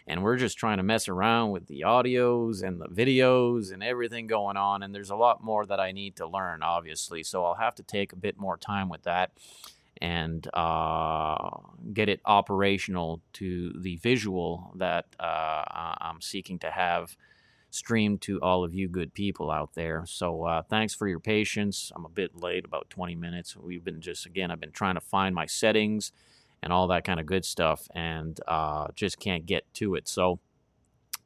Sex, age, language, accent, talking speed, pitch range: male, 30-49, English, American, 195 wpm, 80-105 Hz